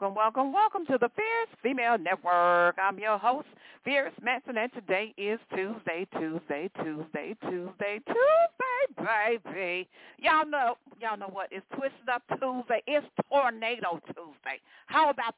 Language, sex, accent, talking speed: English, female, American, 140 wpm